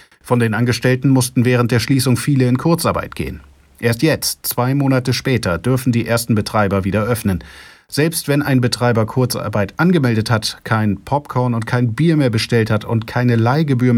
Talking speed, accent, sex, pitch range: 170 wpm, German, male, 105-135 Hz